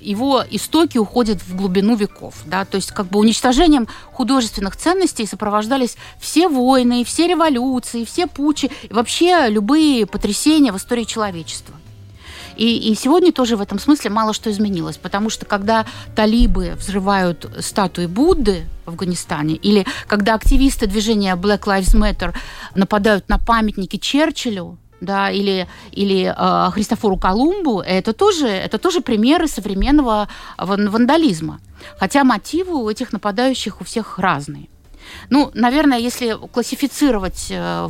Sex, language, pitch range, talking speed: female, Russian, 195-260 Hz, 120 wpm